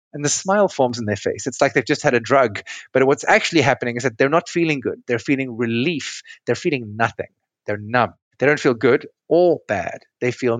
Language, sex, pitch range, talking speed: English, male, 120-150 Hz, 225 wpm